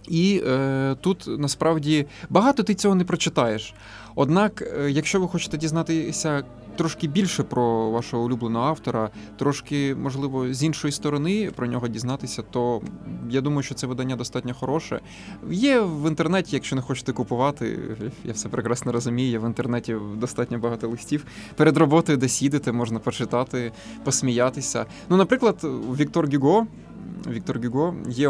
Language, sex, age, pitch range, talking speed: Ukrainian, male, 20-39, 120-160 Hz, 140 wpm